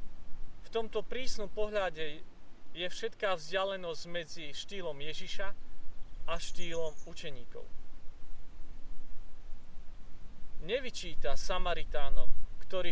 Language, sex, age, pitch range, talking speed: Slovak, male, 40-59, 145-210 Hz, 75 wpm